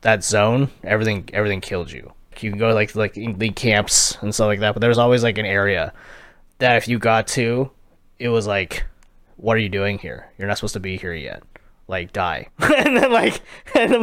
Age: 20-39